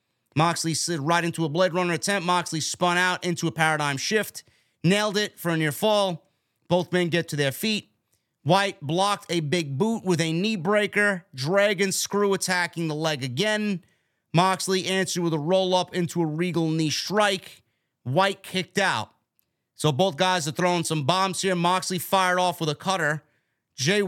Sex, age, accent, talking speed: male, 30-49, American, 175 wpm